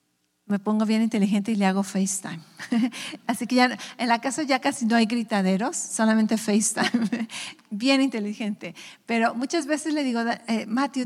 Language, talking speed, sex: English, 165 wpm, female